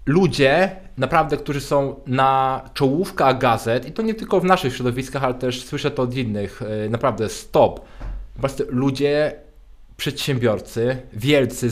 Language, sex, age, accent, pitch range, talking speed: Polish, male, 20-39, native, 120-145 Hz, 135 wpm